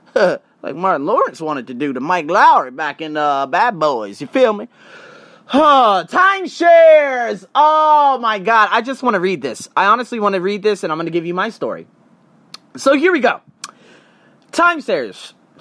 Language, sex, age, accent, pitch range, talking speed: English, male, 30-49, American, 175-255 Hz, 180 wpm